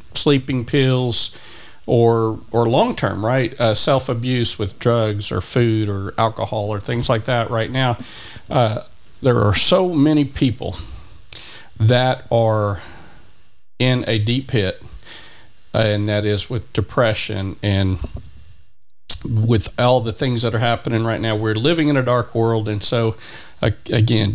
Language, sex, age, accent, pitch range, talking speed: English, male, 40-59, American, 105-120 Hz, 140 wpm